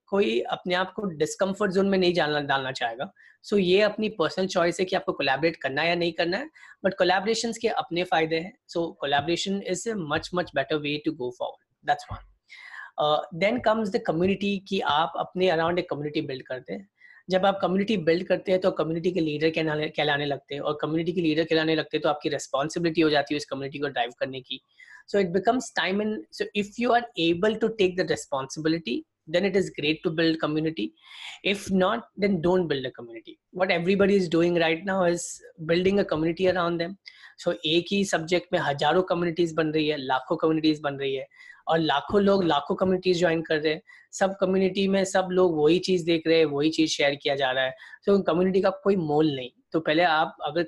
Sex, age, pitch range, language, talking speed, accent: female, 20-39, 155-190 Hz, Hindi, 200 wpm, native